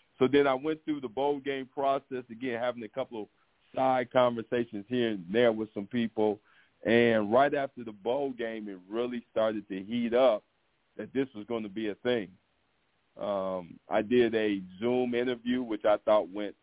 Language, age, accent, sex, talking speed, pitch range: English, 50-69, American, male, 190 wpm, 105-125 Hz